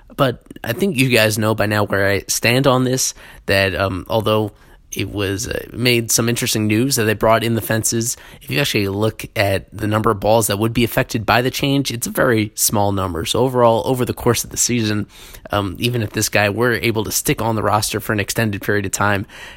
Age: 20-39